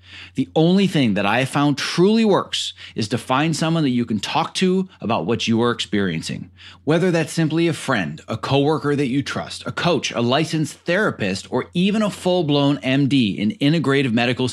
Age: 30-49